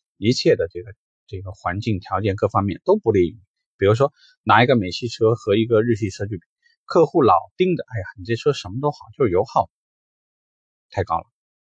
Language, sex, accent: Chinese, male, native